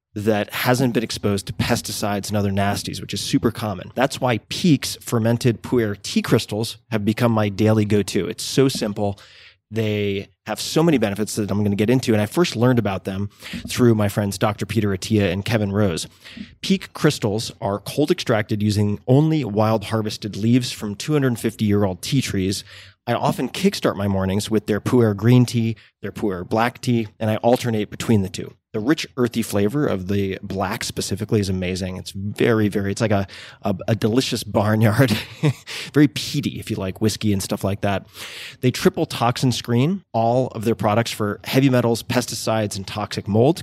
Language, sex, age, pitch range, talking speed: English, male, 30-49, 105-125 Hz, 195 wpm